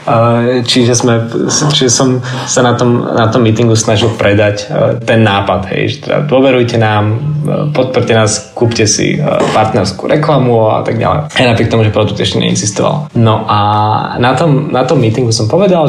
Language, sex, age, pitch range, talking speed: Czech, male, 20-39, 115-150 Hz, 145 wpm